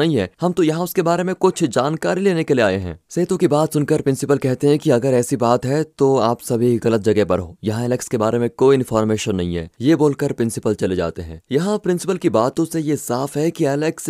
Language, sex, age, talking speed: Hindi, male, 20-39, 245 wpm